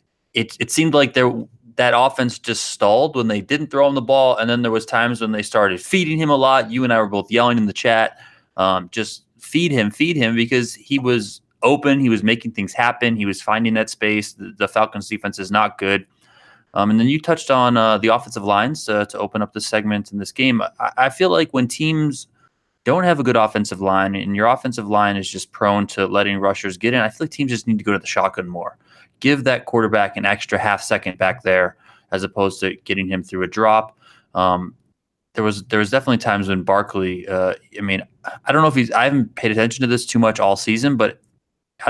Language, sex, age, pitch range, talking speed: English, male, 20-39, 100-125 Hz, 235 wpm